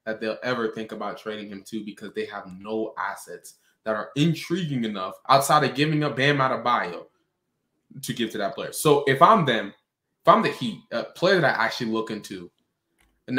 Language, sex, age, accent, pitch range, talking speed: English, male, 20-39, American, 115-160 Hz, 195 wpm